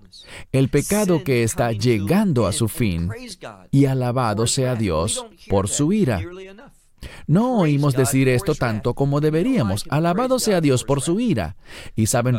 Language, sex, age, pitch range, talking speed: English, male, 40-59, 110-160 Hz, 145 wpm